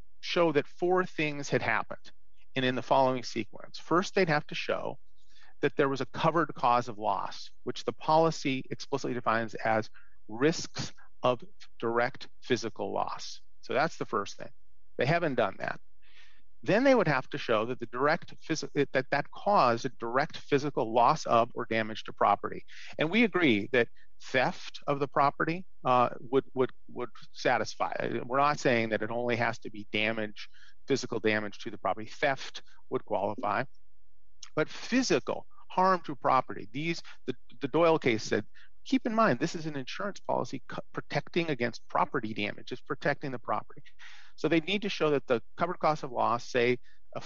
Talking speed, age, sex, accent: 175 wpm, 40-59, male, American